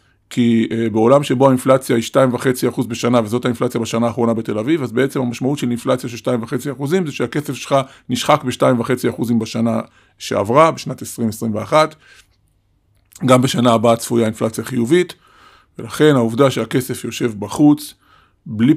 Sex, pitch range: male, 120-155 Hz